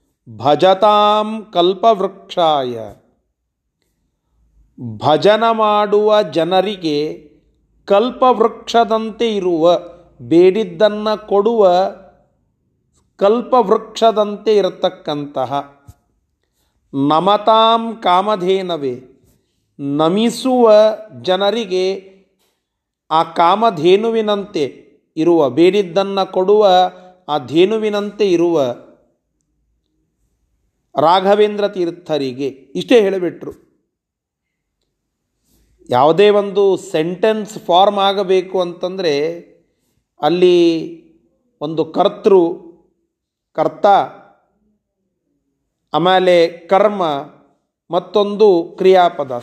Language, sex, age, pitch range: Kannada, male, 40-59, 165-210 Hz